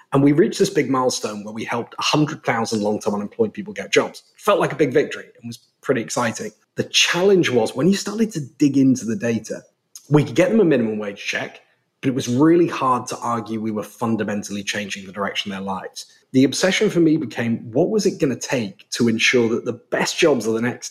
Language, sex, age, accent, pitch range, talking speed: English, male, 30-49, British, 110-155 Hz, 225 wpm